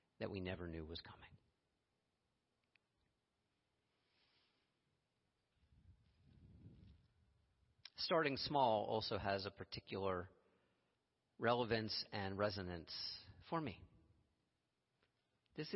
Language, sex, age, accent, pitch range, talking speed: English, male, 50-69, American, 90-110 Hz, 70 wpm